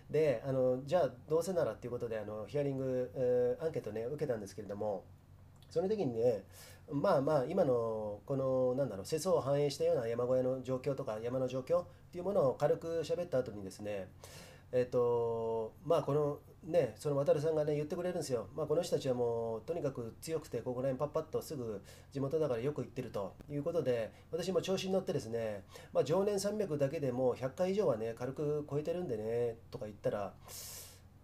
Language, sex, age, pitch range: Japanese, male, 30-49, 115-170 Hz